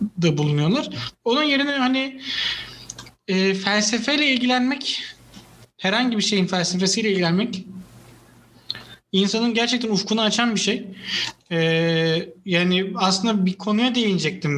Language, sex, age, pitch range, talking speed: Turkish, male, 30-49, 160-205 Hz, 105 wpm